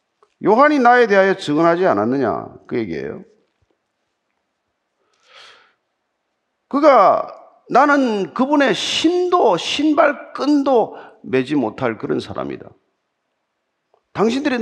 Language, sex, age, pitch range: Korean, male, 50-69, 170-265 Hz